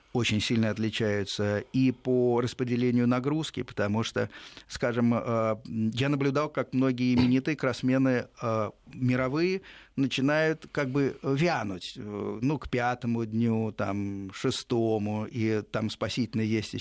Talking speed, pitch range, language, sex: 110 wpm, 110-135 Hz, Russian, male